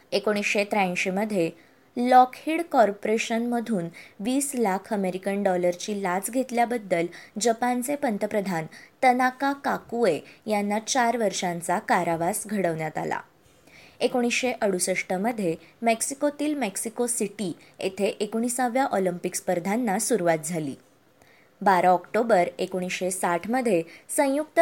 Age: 20-39